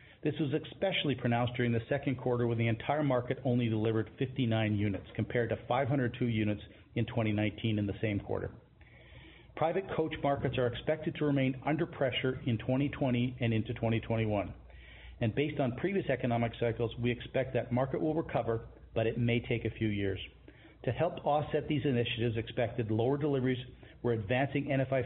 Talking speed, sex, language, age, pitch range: 170 wpm, male, English, 40-59, 115-140 Hz